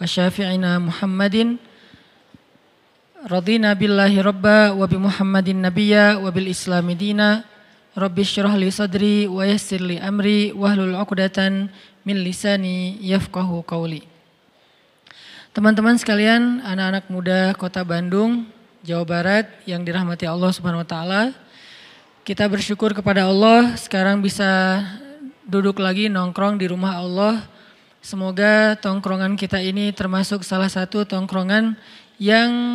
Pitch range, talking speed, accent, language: 190-215 Hz, 80 wpm, native, Indonesian